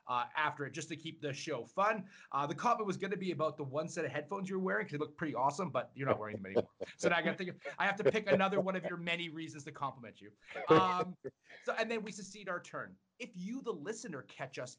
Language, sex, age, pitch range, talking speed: English, male, 30-49, 135-175 Hz, 280 wpm